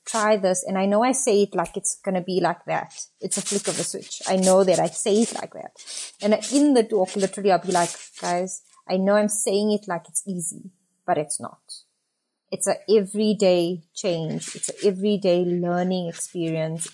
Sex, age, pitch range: female, 30-49, 175-205 Hz